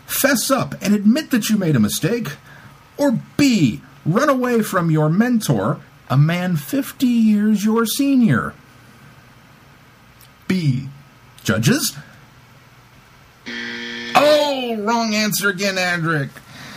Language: English